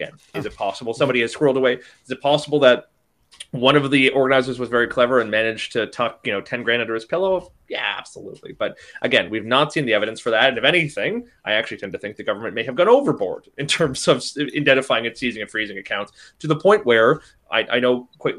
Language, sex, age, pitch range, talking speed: English, male, 30-49, 130-195 Hz, 235 wpm